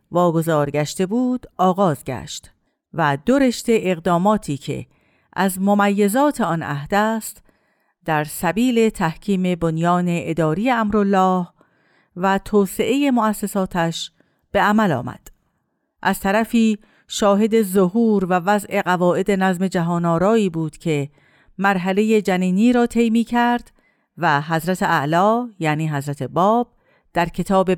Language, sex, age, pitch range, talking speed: Persian, female, 50-69, 170-220 Hz, 105 wpm